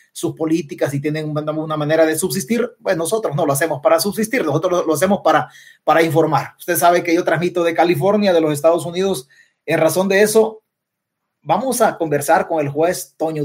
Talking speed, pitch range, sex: 190 wpm, 150-195 Hz, male